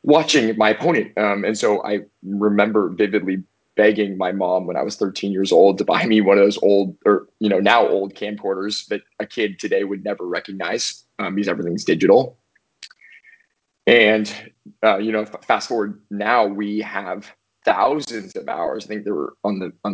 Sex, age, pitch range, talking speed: male, 20-39, 100-110 Hz, 185 wpm